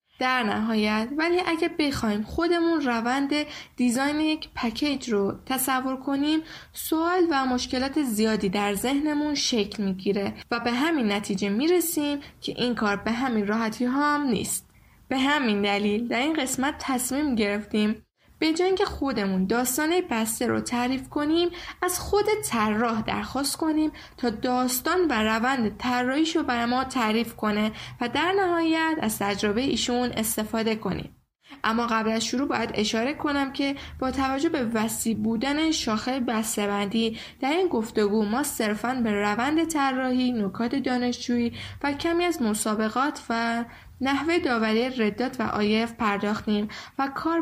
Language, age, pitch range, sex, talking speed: Persian, 10-29, 220-290 Hz, female, 140 wpm